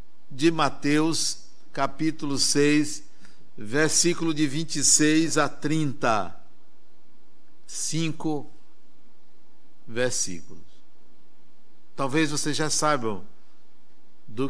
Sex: male